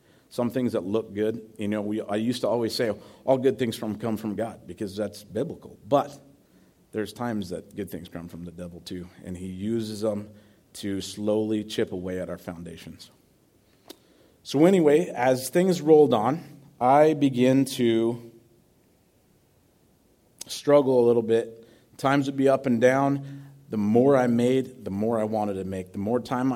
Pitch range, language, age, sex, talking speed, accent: 100-125 Hz, English, 40-59, male, 175 wpm, American